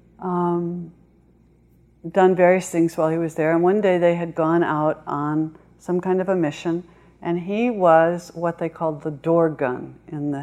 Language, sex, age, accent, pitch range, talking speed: English, female, 60-79, American, 155-195 Hz, 185 wpm